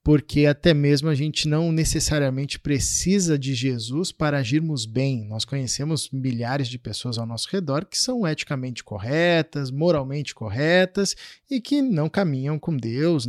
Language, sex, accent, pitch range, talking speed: Portuguese, male, Brazilian, 130-165 Hz, 150 wpm